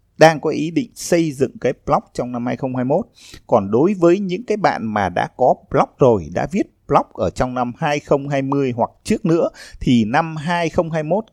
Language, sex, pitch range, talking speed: Vietnamese, male, 110-170 Hz, 185 wpm